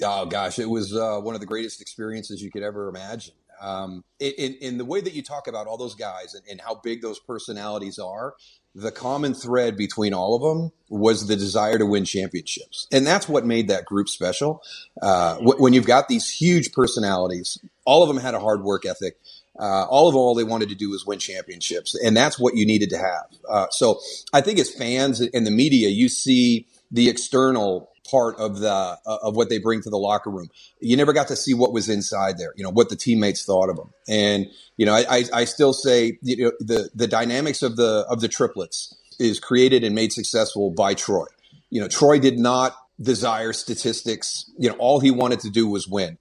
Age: 30-49